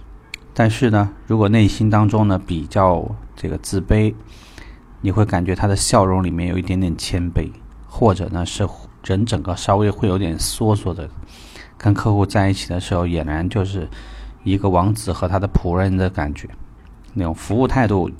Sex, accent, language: male, native, Chinese